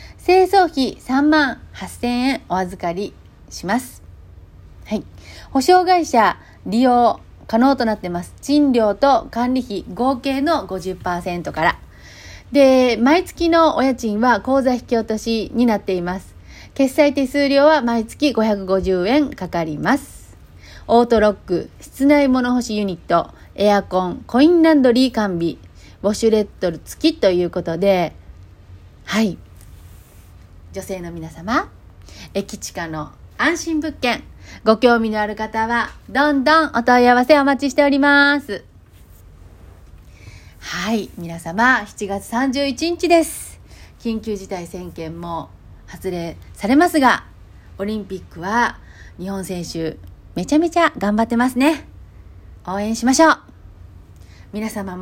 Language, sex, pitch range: Japanese, female, 170-270 Hz